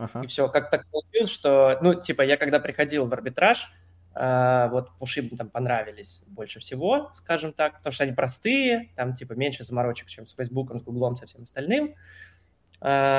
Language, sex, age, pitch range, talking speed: Russian, male, 20-39, 115-145 Hz, 175 wpm